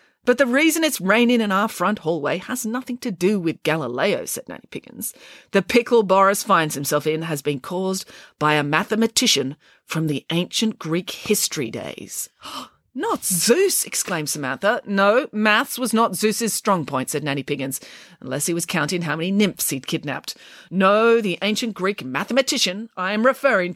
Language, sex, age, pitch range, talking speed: English, female, 40-59, 150-235 Hz, 170 wpm